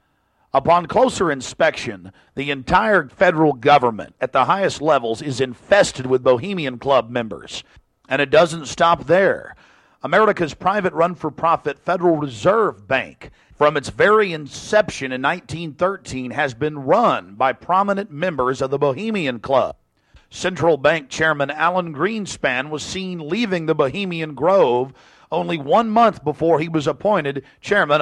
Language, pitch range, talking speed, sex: English, 135-175 Hz, 135 wpm, male